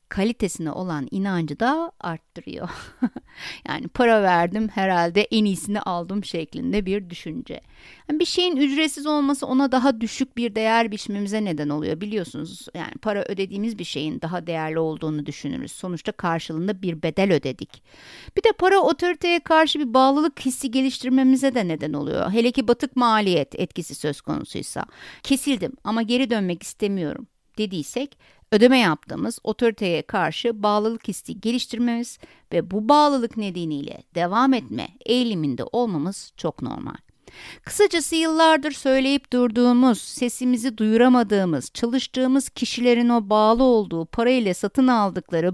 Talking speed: 130 wpm